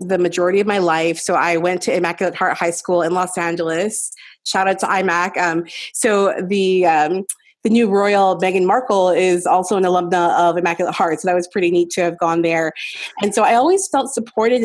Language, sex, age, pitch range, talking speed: English, female, 30-49, 180-215 Hz, 210 wpm